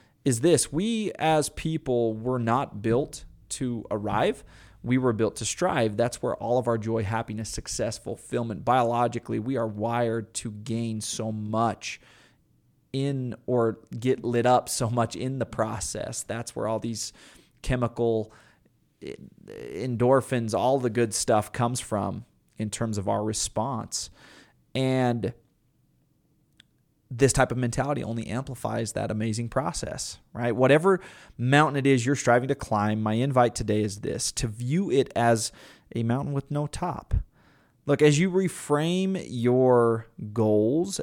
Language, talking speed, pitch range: English, 145 wpm, 110-130 Hz